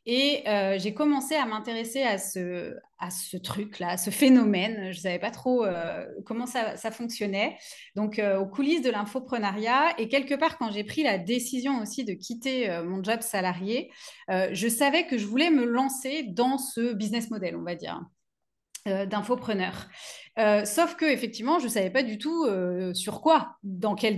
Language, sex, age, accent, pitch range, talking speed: French, female, 30-49, French, 200-265 Hz, 190 wpm